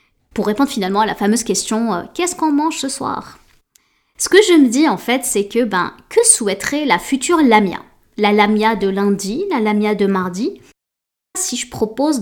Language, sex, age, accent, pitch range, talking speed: French, female, 20-39, French, 205-255 Hz, 200 wpm